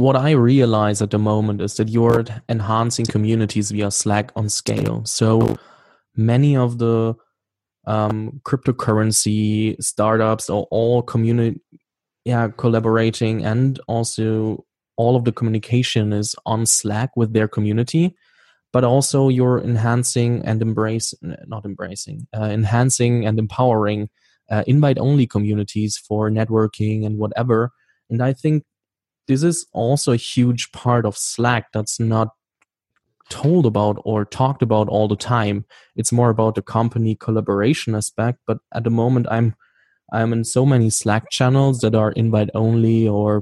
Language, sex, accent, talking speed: German, male, German, 135 wpm